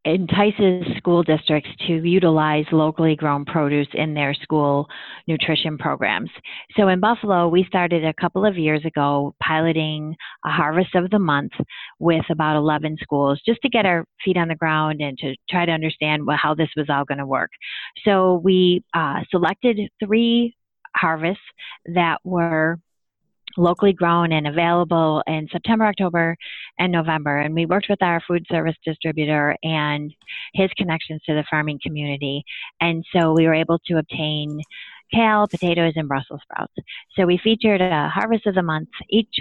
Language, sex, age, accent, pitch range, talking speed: English, female, 30-49, American, 150-180 Hz, 160 wpm